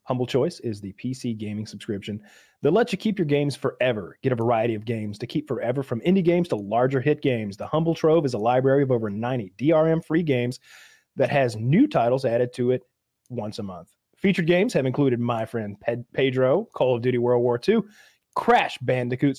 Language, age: English, 30-49